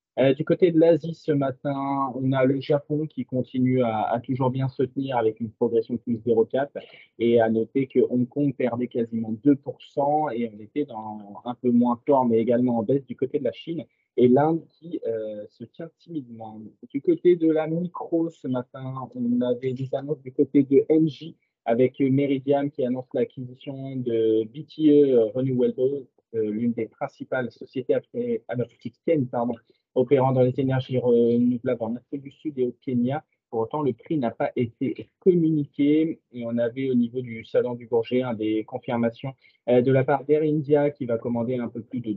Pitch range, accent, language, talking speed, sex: 120-145 Hz, French, French, 185 wpm, male